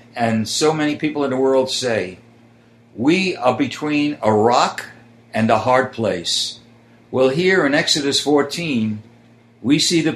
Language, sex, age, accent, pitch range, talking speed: English, male, 60-79, American, 115-155 Hz, 150 wpm